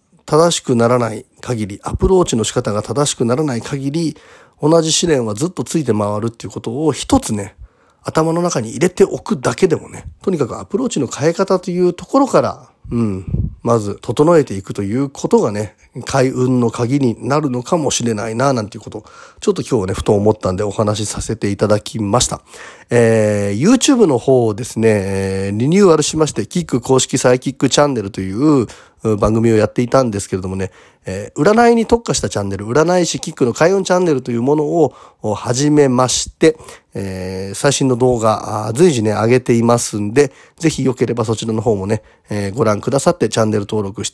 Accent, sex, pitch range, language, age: native, male, 105-150 Hz, Japanese, 40-59